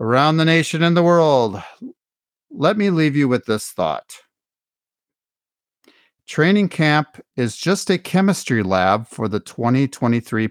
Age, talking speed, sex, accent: 50-69, 130 wpm, male, American